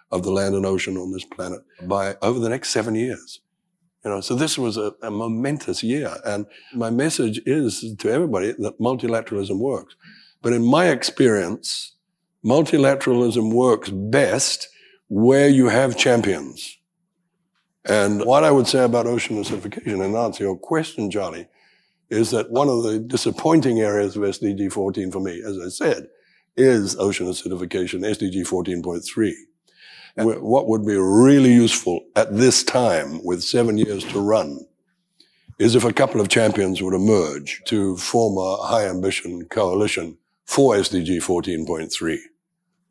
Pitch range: 95-125 Hz